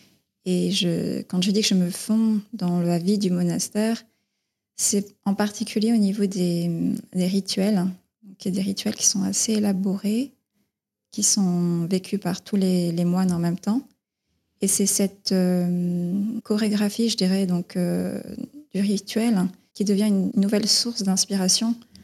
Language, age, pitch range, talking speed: French, 20-39, 180-205 Hz, 160 wpm